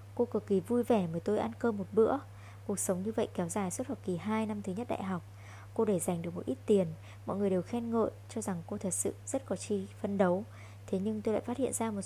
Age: 20-39